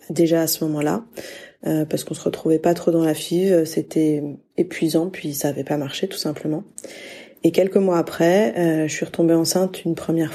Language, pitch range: French, 160-190 Hz